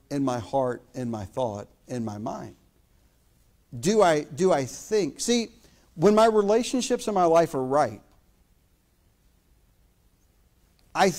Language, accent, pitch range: English, American, 130-155 Hz